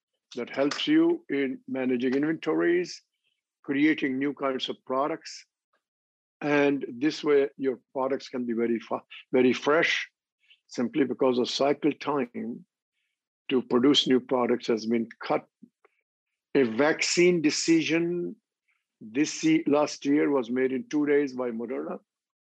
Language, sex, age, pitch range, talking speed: English, male, 50-69, 125-160 Hz, 130 wpm